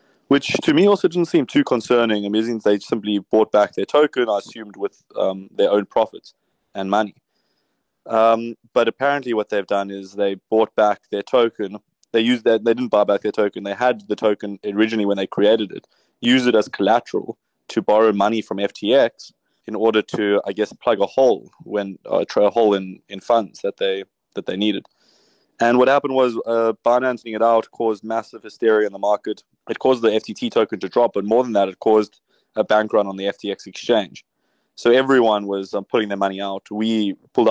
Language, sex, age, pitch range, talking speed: English, male, 20-39, 100-115 Hz, 205 wpm